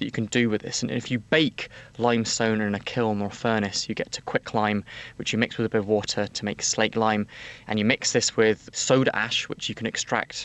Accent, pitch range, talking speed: British, 110-130 Hz, 245 wpm